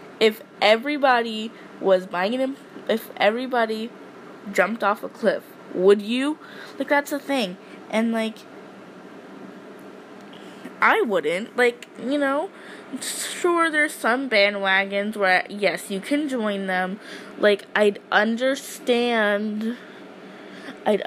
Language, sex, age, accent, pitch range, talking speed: English, female, 20-39, American, 200-260 Hz, 110 wpm